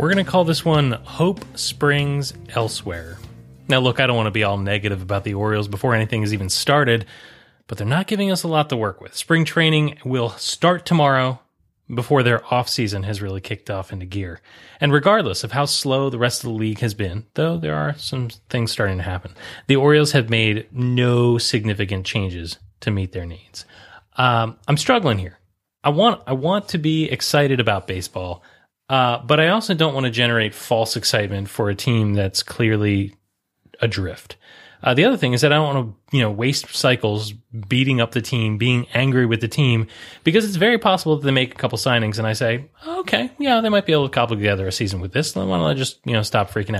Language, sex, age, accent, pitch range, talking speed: English, male, 30-49, American, 105-140 Hz, 215 wpm